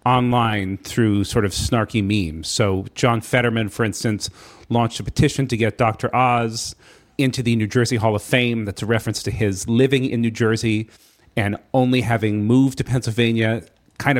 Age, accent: 40-59, American